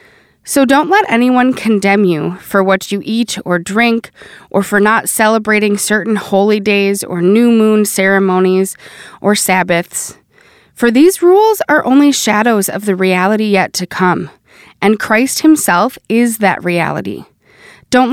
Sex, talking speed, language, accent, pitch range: female, 145 wpm, English, American, 190-245 Hz